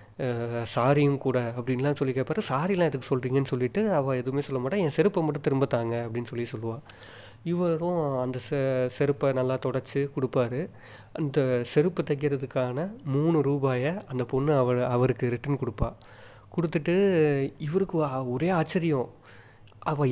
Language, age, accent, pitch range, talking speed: Tamil, 30-49, native, 120-145 Hz, 120 wpm